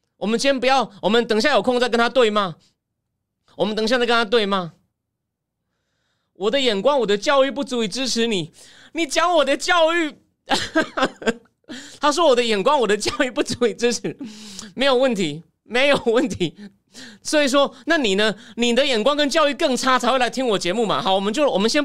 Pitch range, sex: 205-285 Hz, male